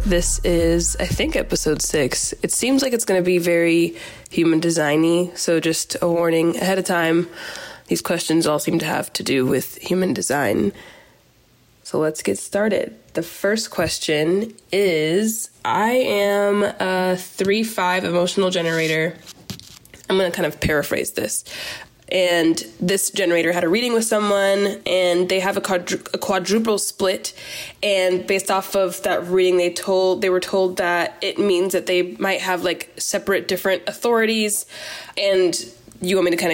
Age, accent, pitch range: 20-39, American, 170-200 Hz